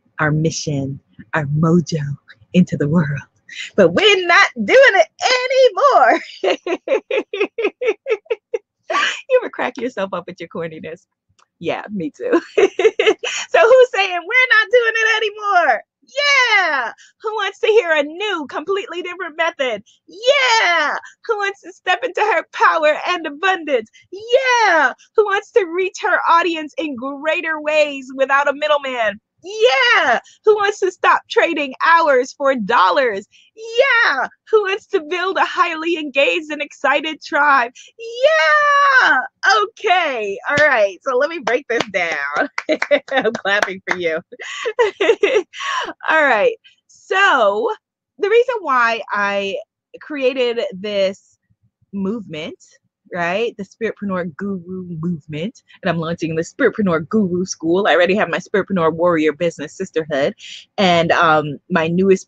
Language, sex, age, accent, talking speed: English, female, 30-49, American, 130 wpm